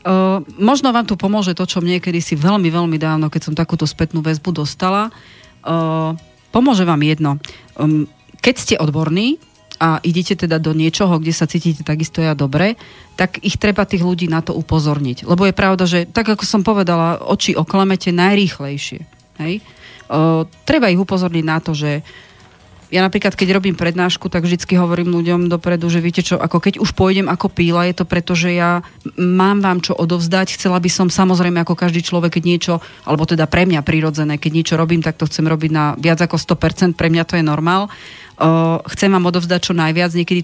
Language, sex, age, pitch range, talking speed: Slovak, female, 30-49, 160-185 Hz, 190 wpm